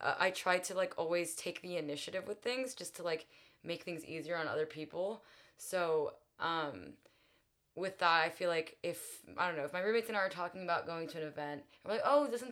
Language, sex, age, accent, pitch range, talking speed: English, female, 20-39, American, 170-225 Hz, 220 wpm